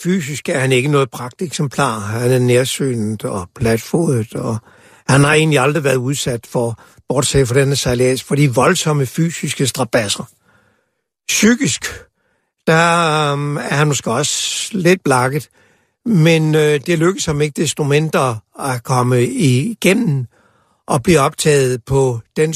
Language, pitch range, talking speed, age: Danish, 130-160 Hz, 135 wpm, 60-79